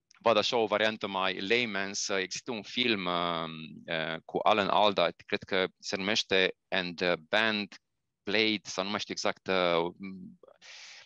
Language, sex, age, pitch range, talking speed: Romanian, male, 30-49, 95-115 Hz, 145 wpm